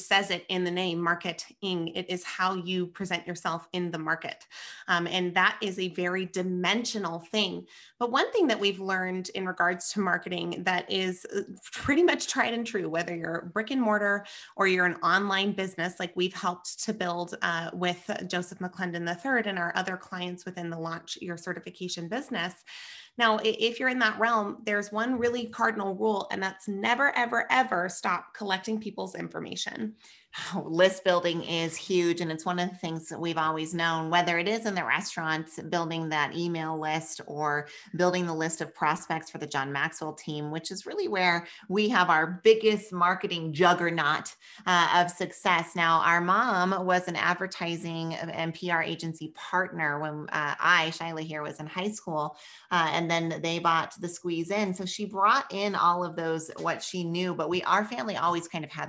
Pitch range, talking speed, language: 165-200 Hz, 185 wpm, English